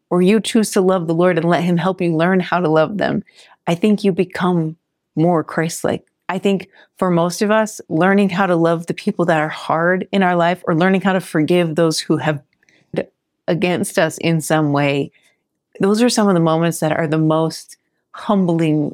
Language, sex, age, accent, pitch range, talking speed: English, female, 40-59, American, 155-190 Hz, 205 wpm